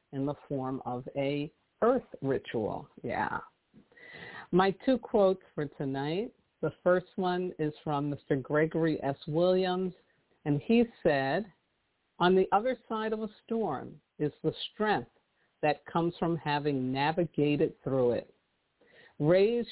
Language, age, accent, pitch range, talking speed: English, 50-69, American, 140-190 Hz, 130 wpm